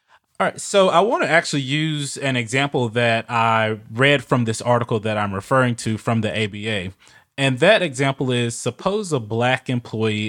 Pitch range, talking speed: 110-135 Hz, 180 wpm